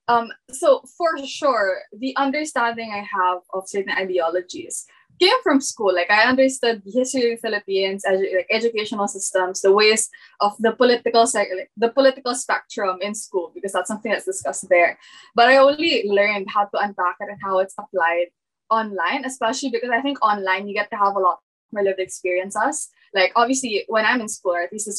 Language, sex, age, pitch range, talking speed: English, female, 20-39, 195-255 Hz, 195 wpm